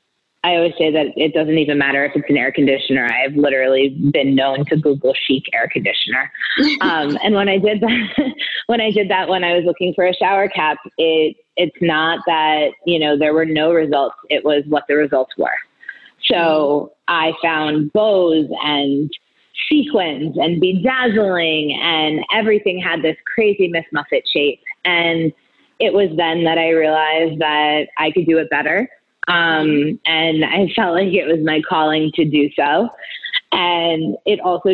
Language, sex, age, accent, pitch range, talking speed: English, female, 20-39, American, 150-175 Hz, 175 wpm